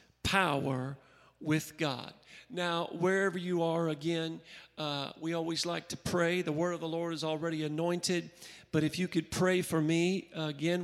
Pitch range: 165-200 Hz